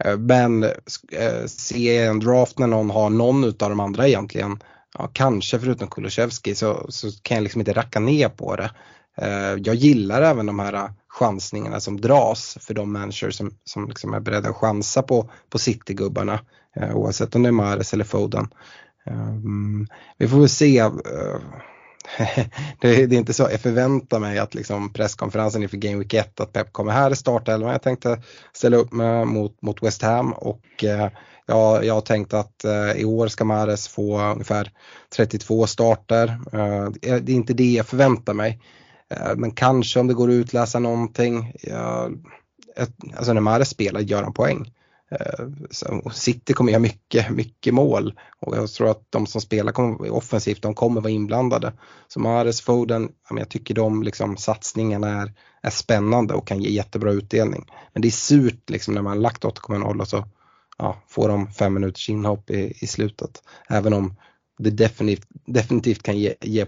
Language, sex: Swedish, male